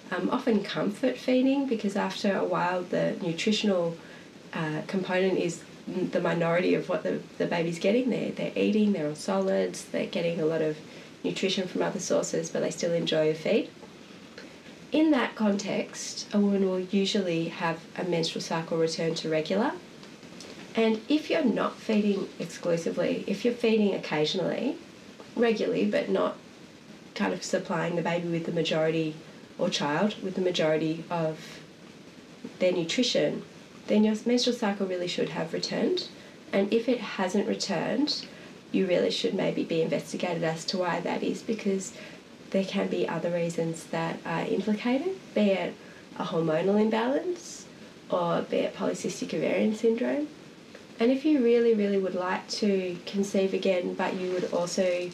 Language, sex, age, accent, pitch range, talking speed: English, female, 30-49, Australian, 170-225 Hz, 155 wpm